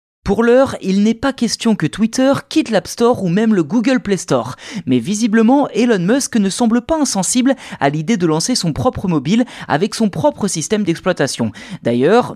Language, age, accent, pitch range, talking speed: French, 20-39, French, 145-215 Hz, 185 wpm